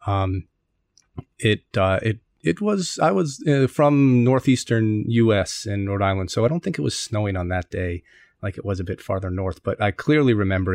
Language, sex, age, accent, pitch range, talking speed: English, male, 30-49, American, 100-120 Hz, 200 wpm